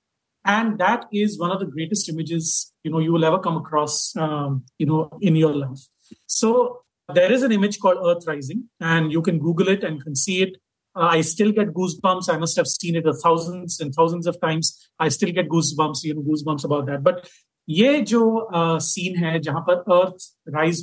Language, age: Hindi, 40-59